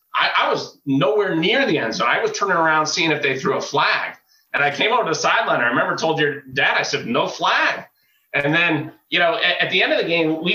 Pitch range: 130-155 Hz